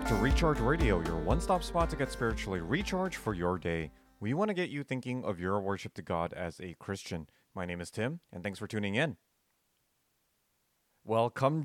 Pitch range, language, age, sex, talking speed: 95-130 Hz, English, 30-49, male, 195 wpm